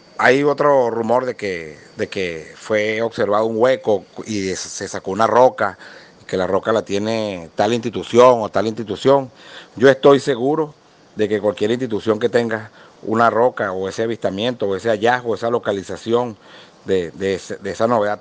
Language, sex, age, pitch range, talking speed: Spanish, male, 50-69, 100-115 Hz, 160 wpm